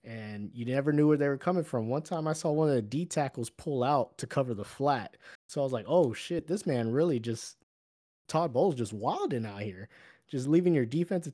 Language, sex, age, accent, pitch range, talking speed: English, male, 20-39, American, 100-130 Hz, 235 wpm